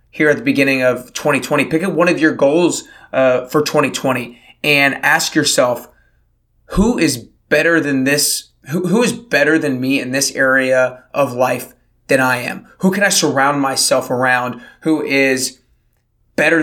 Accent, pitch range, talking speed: American, 130-155 Hz, 165 wpm